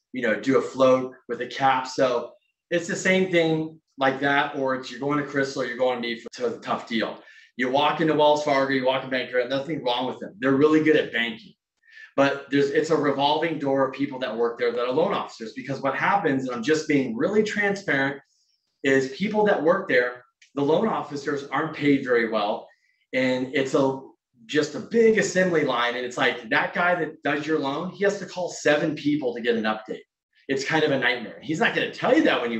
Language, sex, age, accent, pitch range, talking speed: English, male, 30-49, American, 130-160 Hz, 230 wpm